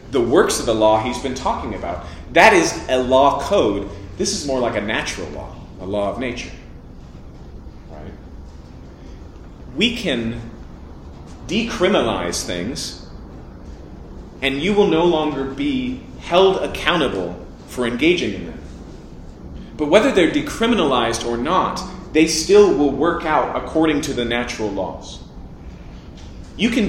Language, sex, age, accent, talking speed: English, male, 30-49, American, 135 wpm